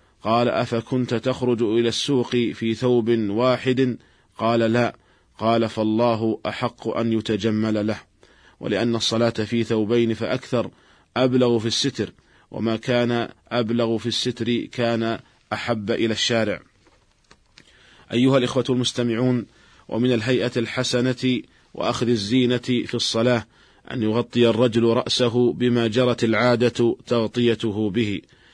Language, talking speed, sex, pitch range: Arabic, 110 wpm, male, 115-120 Hz